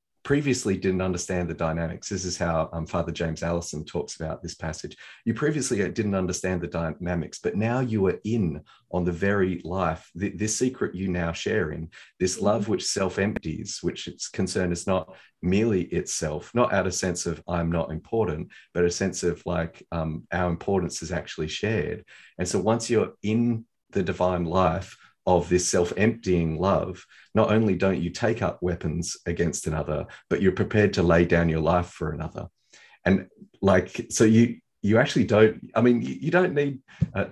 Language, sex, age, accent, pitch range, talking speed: English, male, 30-49, Australian, 85-105 Hz, 180 wpm